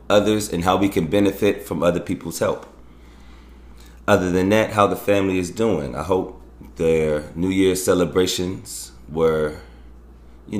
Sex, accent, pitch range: male, American, 75-100 Hz